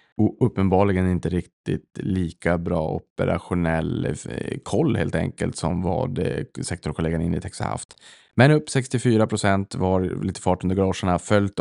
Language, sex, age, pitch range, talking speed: Swedish, male, 20-39, 90-100 Hz, 125 wpm